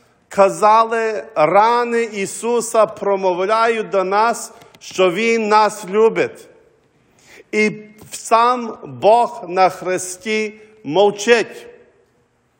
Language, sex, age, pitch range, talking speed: English, male, 50-69, 200-225 Hz, 75 wpm